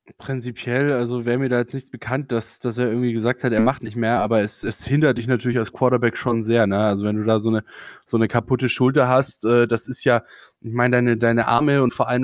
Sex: male